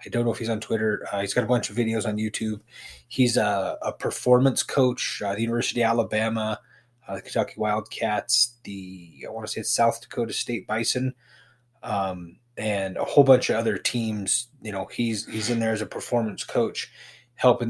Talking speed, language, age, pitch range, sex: 205 wpm, English, 20-39, 105-120 Hz, male